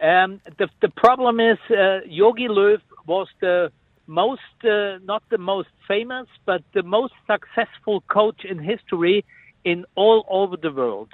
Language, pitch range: English, 180-215 Hz